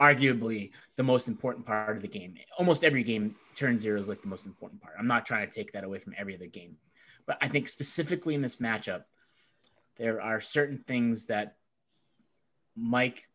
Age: 20-39